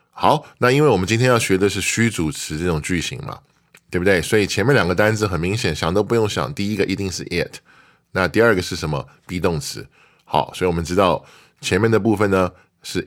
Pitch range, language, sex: 90-110 Hz, Chinese, male